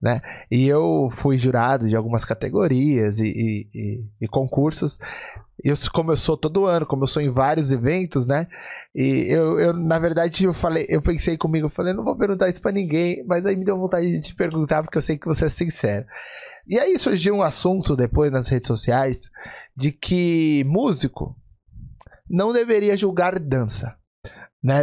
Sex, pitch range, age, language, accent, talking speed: male, 125-170 Hz, 20-39, Portuguese, Brazilian, 185 wpm